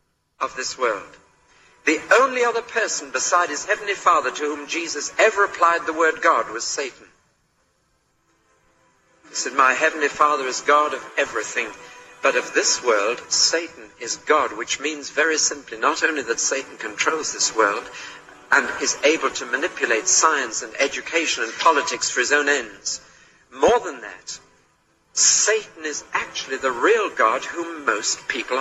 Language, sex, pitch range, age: English, male, 135-205 Hz, 50-69